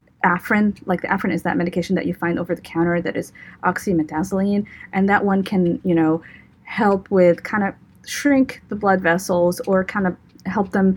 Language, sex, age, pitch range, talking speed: English, female, 30-49, 180-225 Hz, 190 wpm